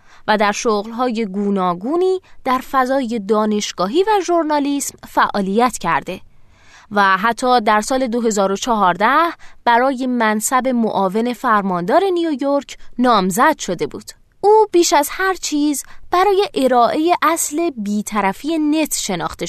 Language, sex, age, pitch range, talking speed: Persian, female, 20-39, 205-310 Hz, 110 wpm